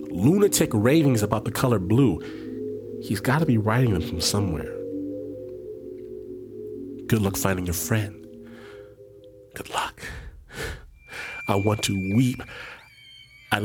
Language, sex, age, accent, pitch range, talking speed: English, male, 30-49, American, 95-125 Hz, 115 wpm